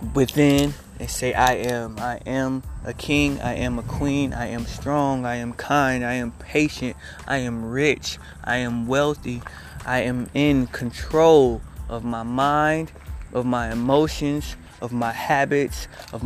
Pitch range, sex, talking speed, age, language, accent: 115-145 Hz, male, 155 wpm, 20-39, English, American